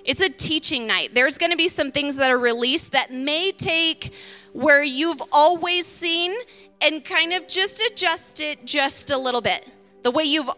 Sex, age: female, 20-39